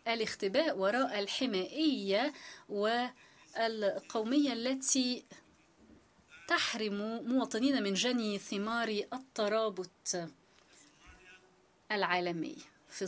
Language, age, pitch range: Arabic, 30-49, 195-250 Hz